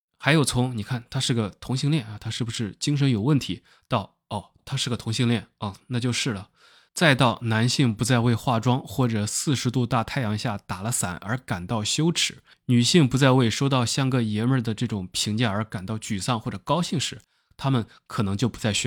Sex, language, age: male, Chinese, 20-39